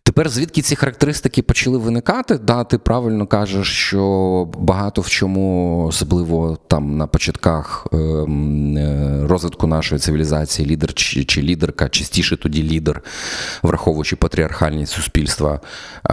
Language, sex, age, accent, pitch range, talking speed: Ukrainian, male, 30-49, native, 75-90 Hz, 110 wpm